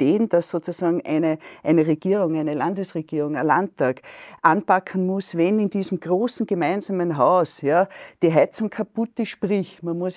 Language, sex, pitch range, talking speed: German, female, 170-225 Hz, 150 wpm